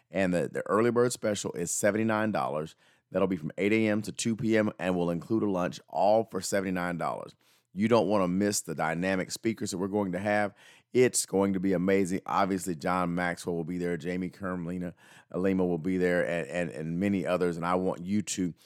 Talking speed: 200 wpm